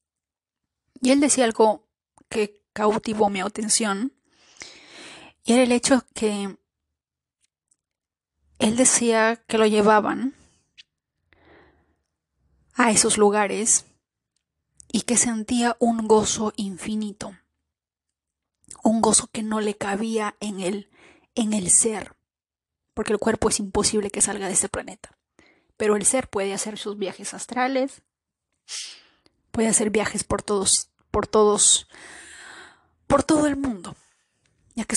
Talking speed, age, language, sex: 120 wpm, 30-49, Spanish, female